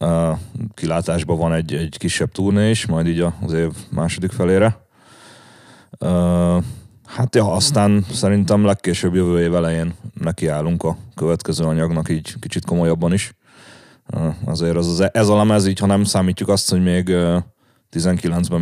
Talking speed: 150 wpm